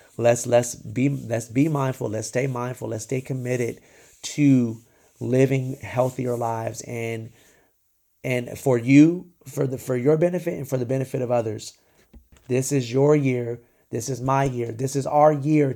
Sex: male